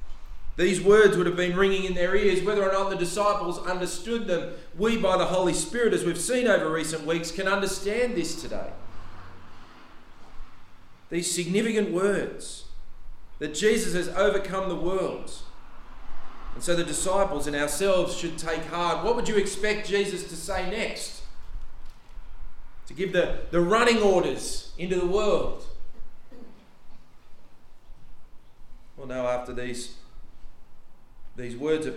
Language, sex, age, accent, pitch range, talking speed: English, male, 40-59, Australian, 120-190 Hz, 135 wpm